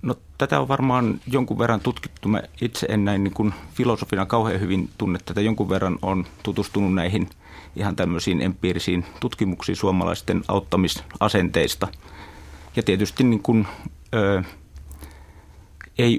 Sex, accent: male, native